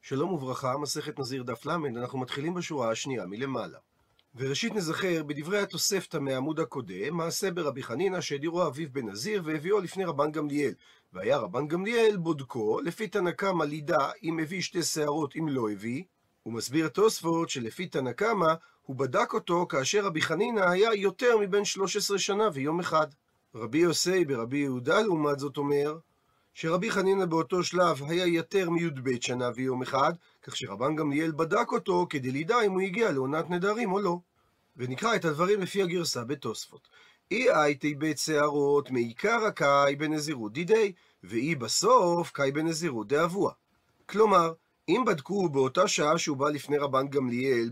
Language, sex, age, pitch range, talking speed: Hebrew, male, 40-59, 140-185 Hz, 150 wpm